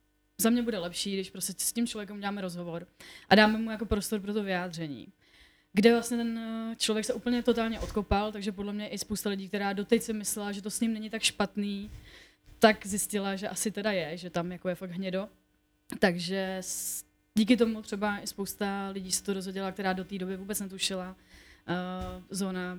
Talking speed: 190 wpm